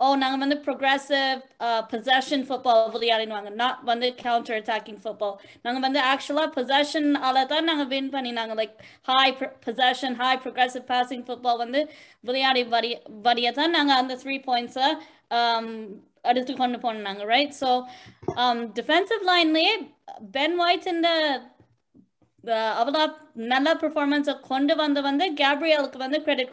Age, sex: 20-39, female